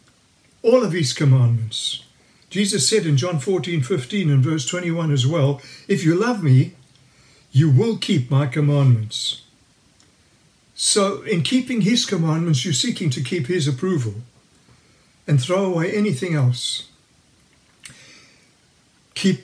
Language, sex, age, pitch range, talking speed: English, male, 60-79, 135-185 Hz, 125 wpm